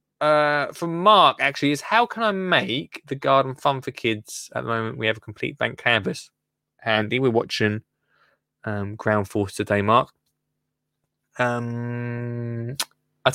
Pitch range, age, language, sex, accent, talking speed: 115-150 Hz, 20-39, English, male, British, 150 wpm